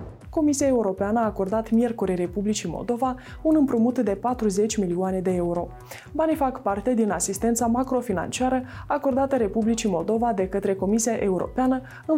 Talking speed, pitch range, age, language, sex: 140 wpm, 195-255 Hz, 20-39, Romanian, female